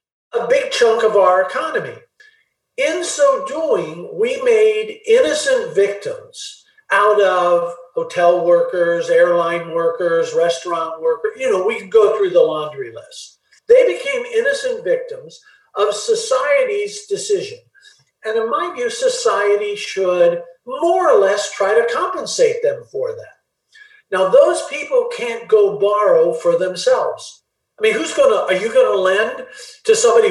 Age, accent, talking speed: 50-69, American, 145 wpm